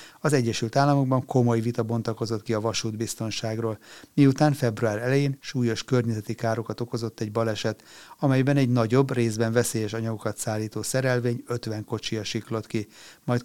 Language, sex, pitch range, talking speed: Hungarian, male, 110-130 Hz, 140 wpm